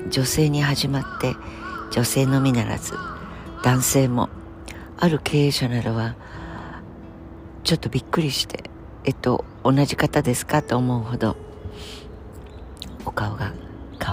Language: Japanese